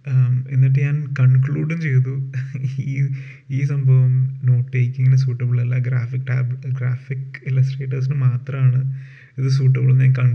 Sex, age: male, 30-49